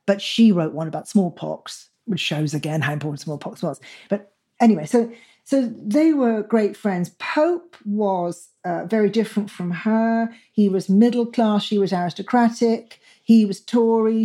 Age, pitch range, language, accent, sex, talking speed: 40-59, 175-225 Hz, English, British, female, 160 wpm